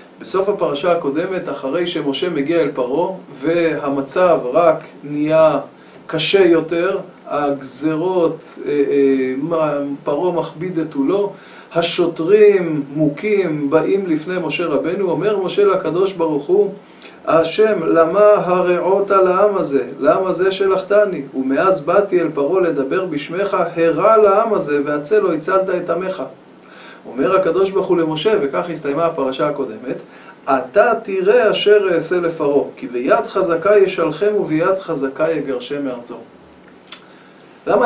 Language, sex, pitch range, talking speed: Hebrew, male, 160-210 Hz, 120 wpm